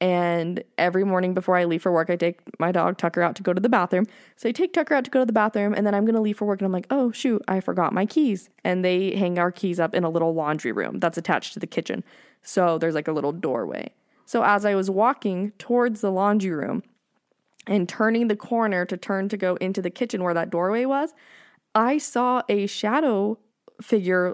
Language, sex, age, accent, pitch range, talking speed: English, female, 20-39, American, 175-225 Hz, 240 wpm